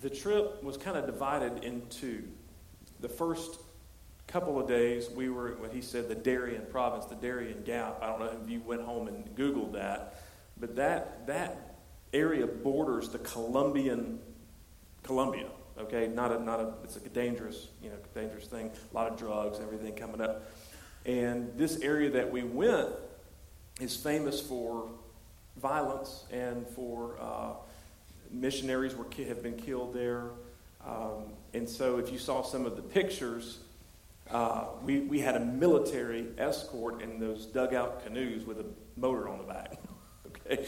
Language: English